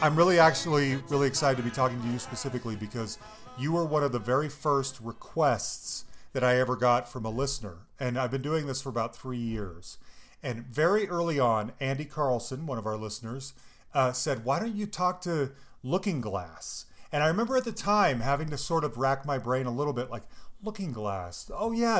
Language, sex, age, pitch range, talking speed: English, male, 30-49, 125-170 Hz, 205 wpm